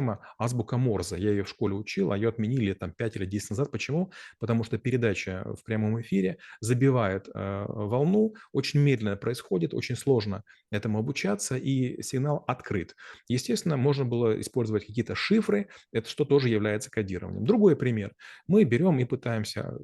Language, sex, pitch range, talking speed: Russian, male, 105-135 Hz, 155 wpm